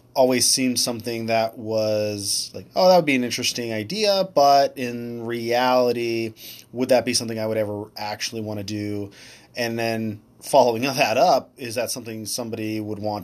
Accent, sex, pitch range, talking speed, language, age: American, male, 105-125 Hz, 170 wpm, English, 20-39